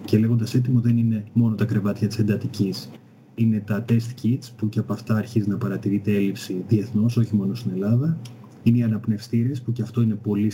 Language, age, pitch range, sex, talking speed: Greek, 30-49, 110-125 Hz, male, 200 wpm